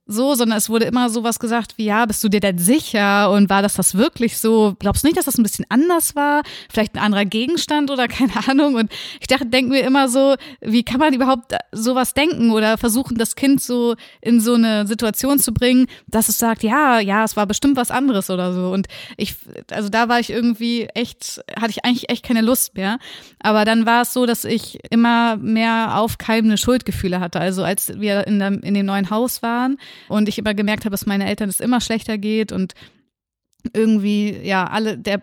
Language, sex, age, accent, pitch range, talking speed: German, female, 30-49, German, 210-250 Hz, 215 wpm